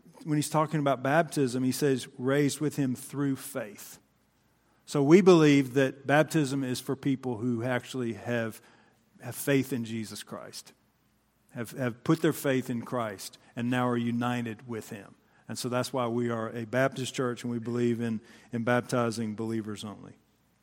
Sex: male